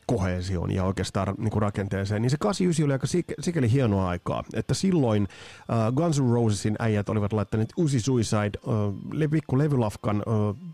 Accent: native